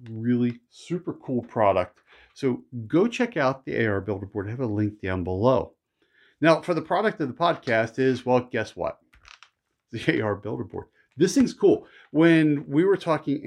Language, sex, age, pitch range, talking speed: English, male, 40-59, 115-155 Hz, 180 wpm